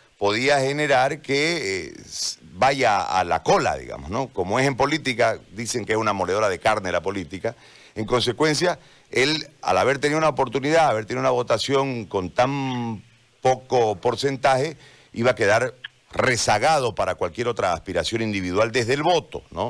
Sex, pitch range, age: male, 115-160 Hz, 50-69